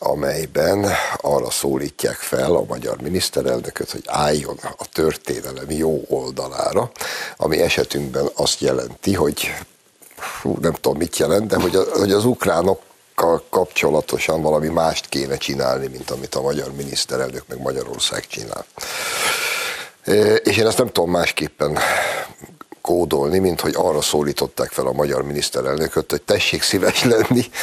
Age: 60-79